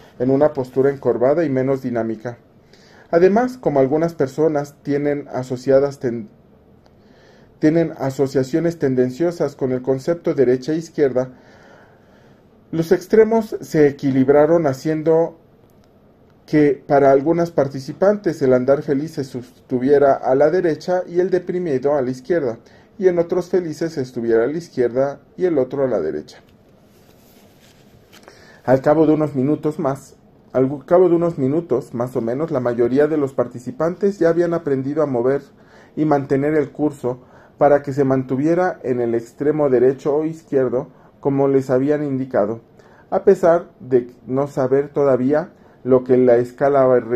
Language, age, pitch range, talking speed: Spanish, 40-59, 130-165 Hz, 145 wpm